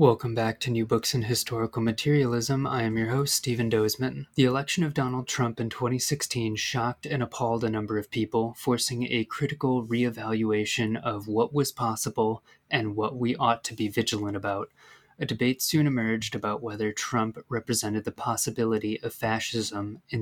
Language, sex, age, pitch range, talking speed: English, male, 20-39, 110-125 Hz, 170 wpm